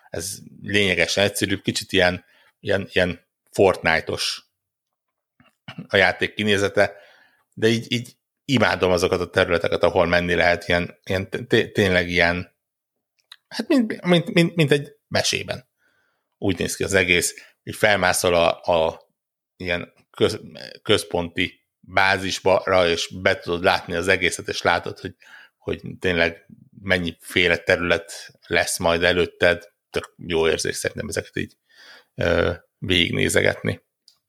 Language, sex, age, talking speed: Hungarian, male, 60-79, 125 wpm